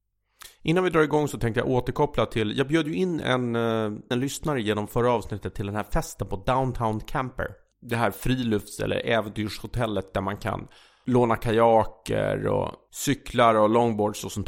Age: 30-49